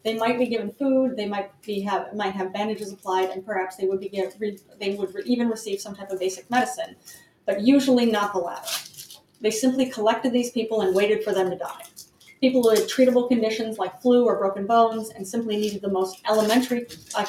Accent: American